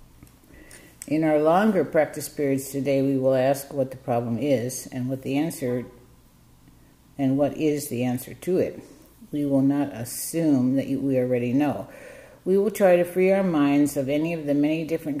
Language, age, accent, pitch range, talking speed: English, 60-79, American, 130-160 Hz, 180 wpm